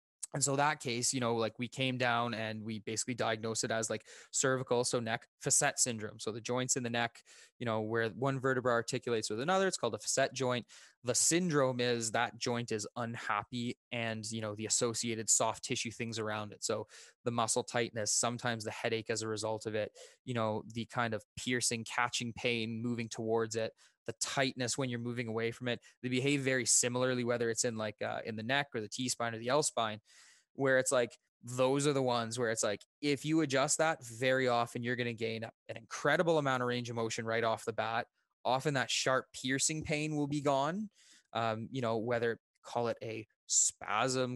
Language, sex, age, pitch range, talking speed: English, male, 20-39, 115-140 Hz, 210 wpm